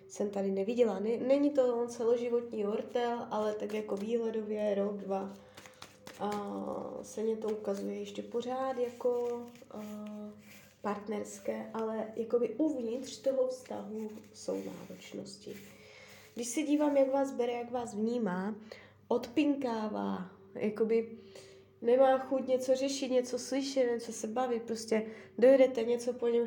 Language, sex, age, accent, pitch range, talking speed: Czech, female, 20-39, native, 215-255 Hz, 125 wpm